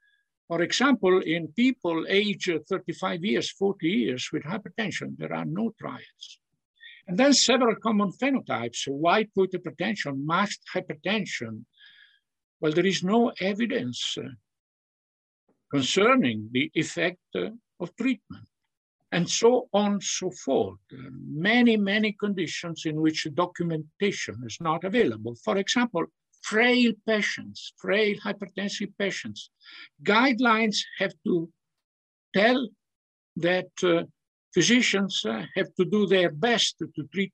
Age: 60-79